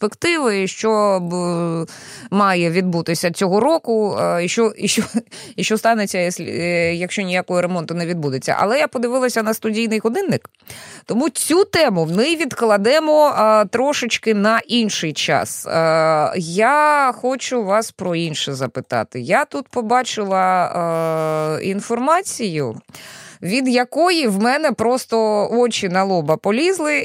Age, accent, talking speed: 20-39, native, 125 wpm